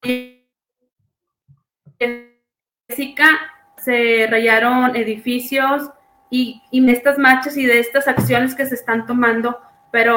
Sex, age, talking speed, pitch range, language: female, 20-39, 105 wpm, 225-265 Hz, English